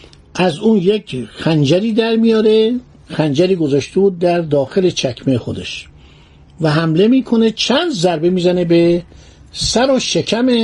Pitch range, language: 145-215 Hz, Persian